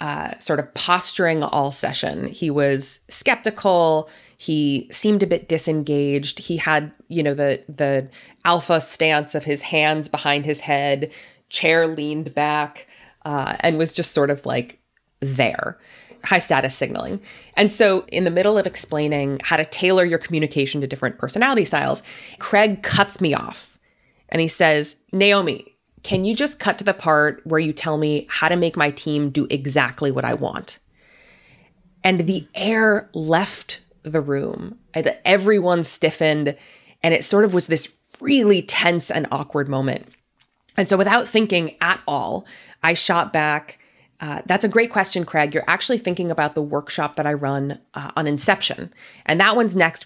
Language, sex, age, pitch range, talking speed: English, female, 20-39, 150-185 Hz, 165 wpm